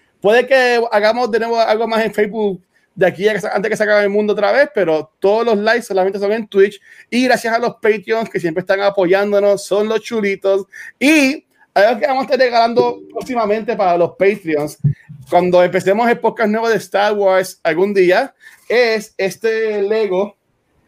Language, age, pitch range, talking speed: Spanish, 30-49, 190-230 Hz, 180 wpm